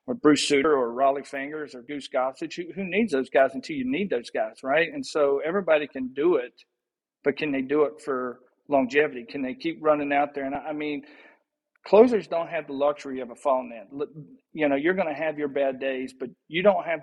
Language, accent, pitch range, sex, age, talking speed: English, American, 135-170 Hz, male, 50-69, 230 wpm